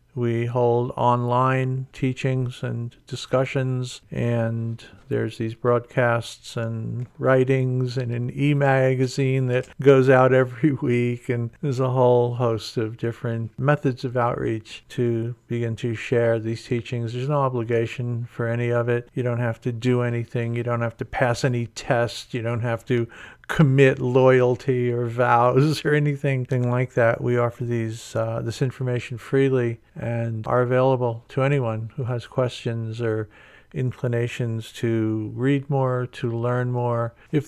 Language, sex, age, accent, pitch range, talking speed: English, male, 50-69, American, 120-135 Hz, 150 wpm